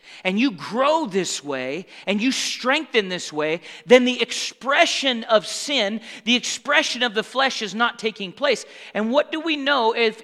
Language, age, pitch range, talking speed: English, 40-59, 175-250 Hz, 175 wpm